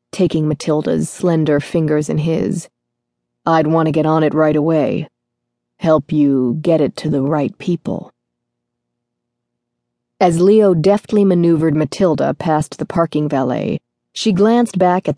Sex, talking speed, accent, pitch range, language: female, 140 wpm, American, 145-180 Hz, English